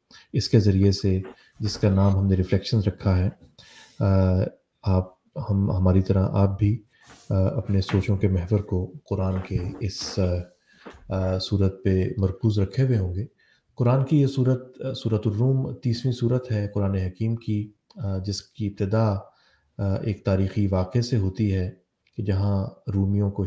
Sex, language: male, English